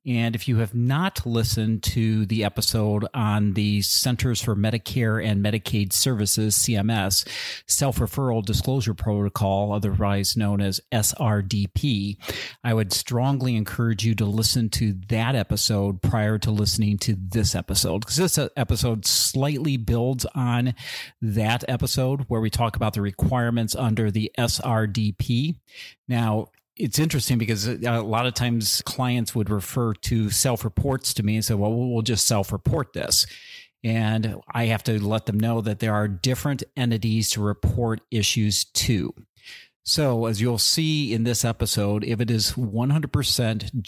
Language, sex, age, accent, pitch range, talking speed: English, male, 40-59, American, 105-120 Hz, 145 wpm